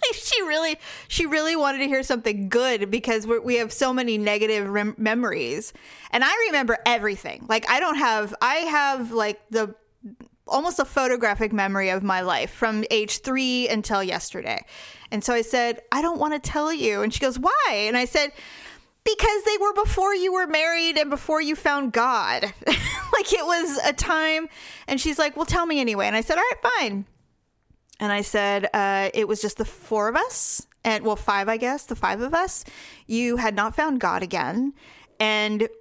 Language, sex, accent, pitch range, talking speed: English, female, American, 215-290 Hz, 190 wpm